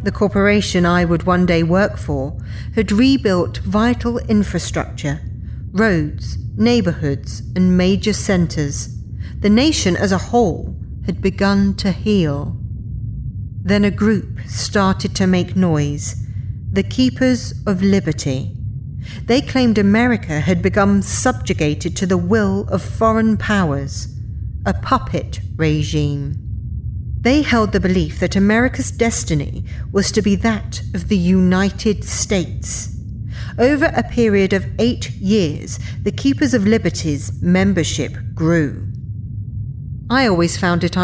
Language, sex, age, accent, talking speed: English, female, 50-69, British, 120 wpm